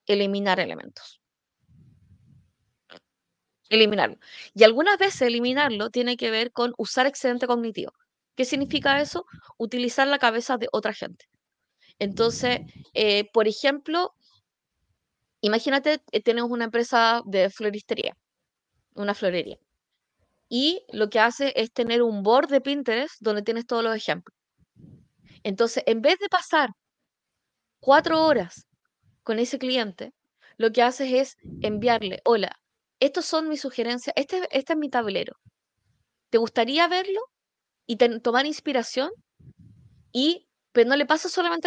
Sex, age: female, 20-39